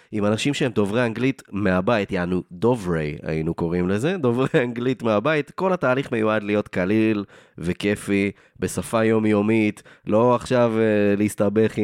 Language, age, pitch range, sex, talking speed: Hebrew, 20-39, 100-130 Hz, male, 130 wpm